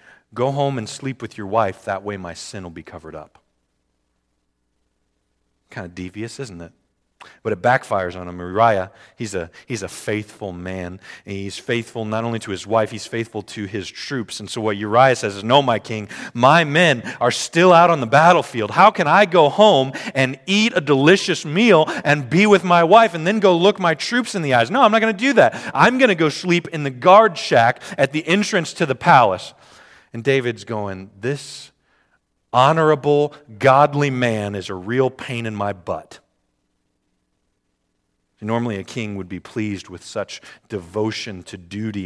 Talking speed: 190 wpm